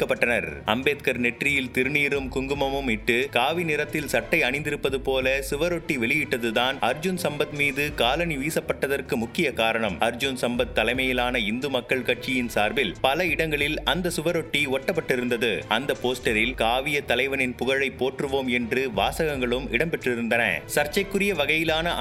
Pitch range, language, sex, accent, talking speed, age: 125-155 Hz, Tamil, male, native, 110 wpm, 30-49